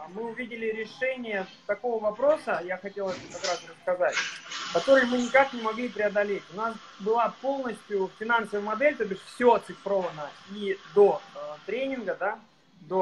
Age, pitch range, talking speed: 30-49, 195-245 Hz, 135 wpm